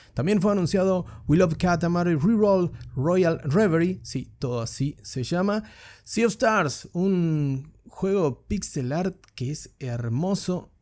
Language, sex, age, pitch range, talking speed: Spanish, male, 30-49, 145-185 Hz, 135 wpm